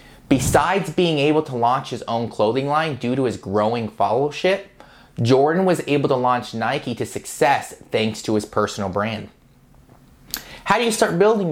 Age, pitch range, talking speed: 30-49, 120-155 Hz, 165 wpm